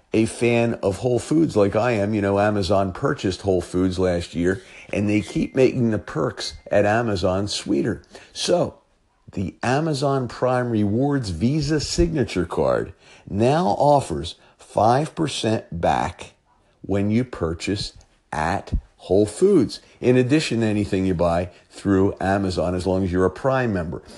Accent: American